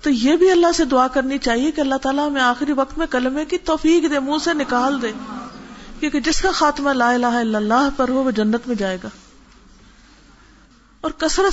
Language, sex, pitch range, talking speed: Urdu, female, 235-320 Hz, 210 wpm